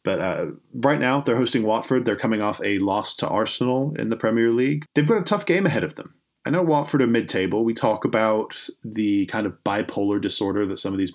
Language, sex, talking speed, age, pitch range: English, male, 230 wpm, 30-49, 90-115 Hz